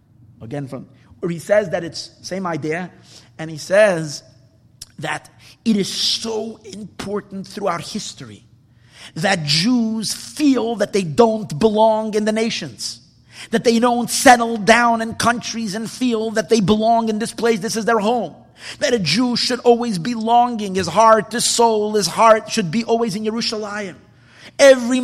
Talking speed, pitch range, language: 165 wpm, 195-250 Hz, English